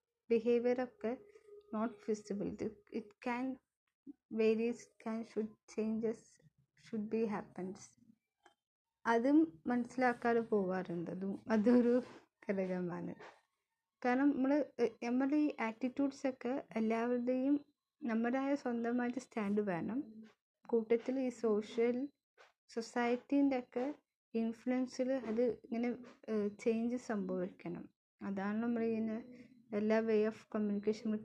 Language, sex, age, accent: Malayalam, female, 20-39, native